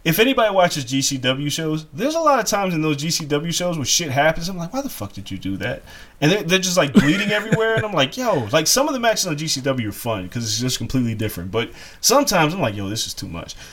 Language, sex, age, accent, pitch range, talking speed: English, male, 20-39, American, 125-185 Hz, 260 wpm